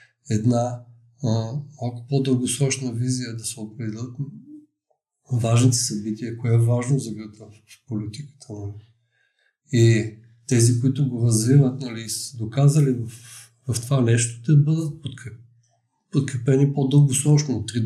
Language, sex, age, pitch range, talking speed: Bulgarian, male, 50-69, 120-145 Hz, 120 wpm